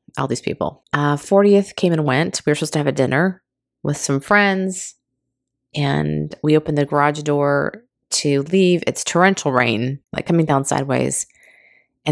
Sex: female